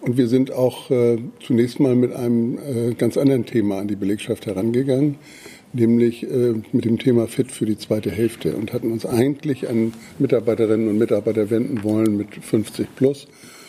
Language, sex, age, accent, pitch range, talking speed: German, male, 60-79, German, 110-125 Hz, 175 wpm